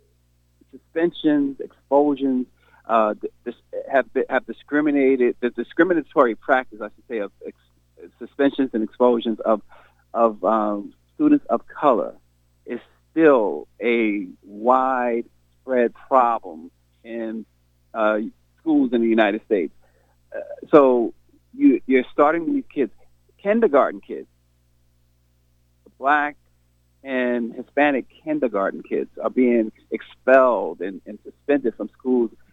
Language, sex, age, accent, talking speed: English, male, 40-59, American, 110 wpm